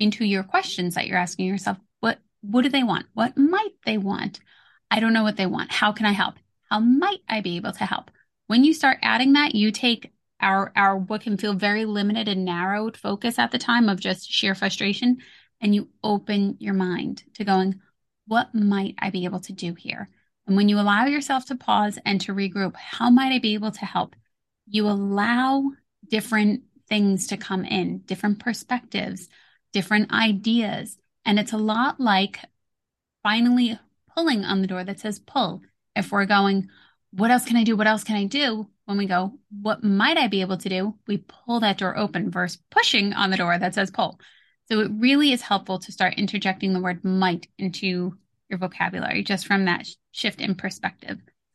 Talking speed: 195 wpm